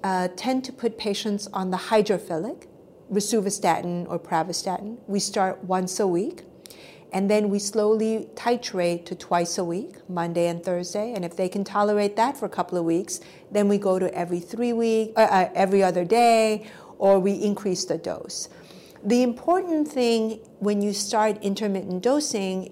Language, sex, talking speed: English, female, 170 wpm